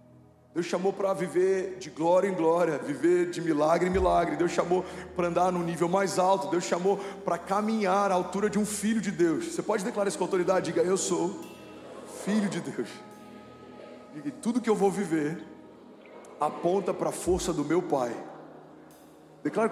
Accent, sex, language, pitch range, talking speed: Brazilian, male, Portuguese, 165-195 Hz, 185 wpm